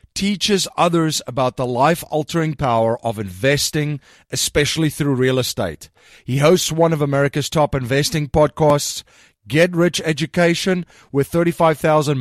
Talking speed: 130 wpm